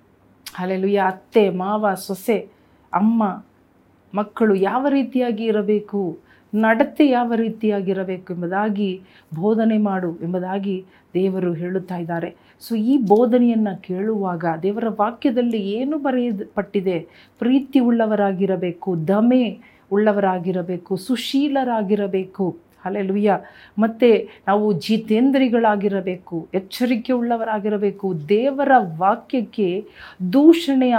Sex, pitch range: female, 195-240 Hz